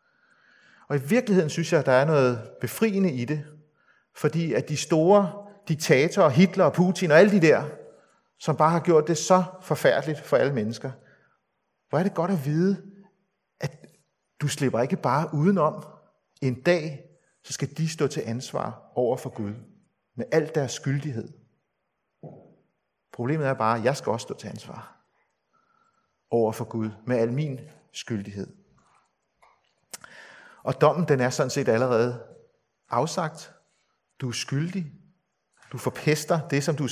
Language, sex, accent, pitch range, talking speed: Danish, male, native, 135-180 Hz, 155 wpm